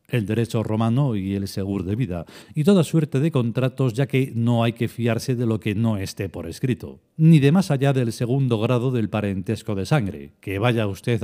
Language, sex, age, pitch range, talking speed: Spanish, male, 40-59, 105-145 Hz, 215 wpm